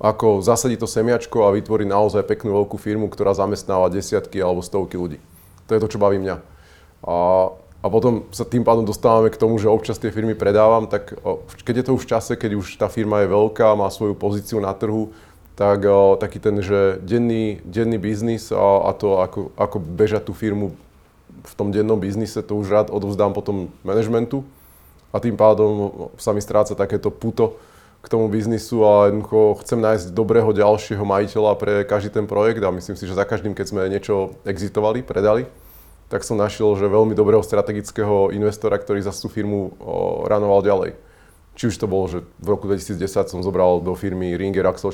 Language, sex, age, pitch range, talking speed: Slovak, male, 30-49, 95-110 Hz, 190 wpm